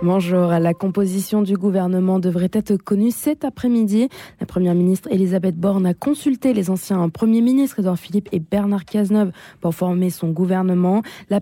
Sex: female